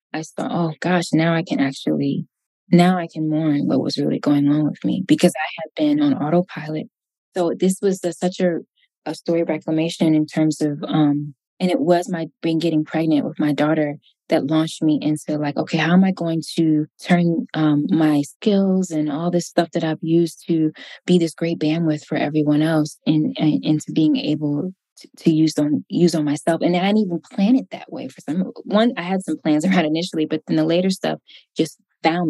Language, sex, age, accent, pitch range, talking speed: English, female, 20-39, American, 155-175 Hz, 210 wpm